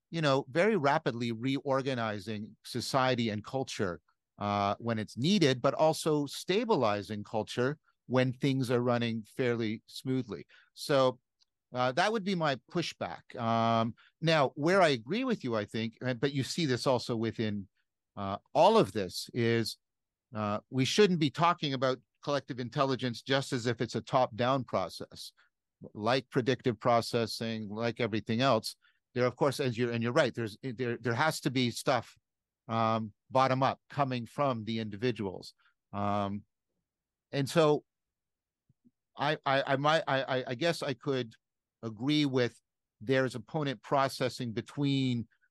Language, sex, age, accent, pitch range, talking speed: English, male, 50-69, American, 110-135 Hz, 145 wpm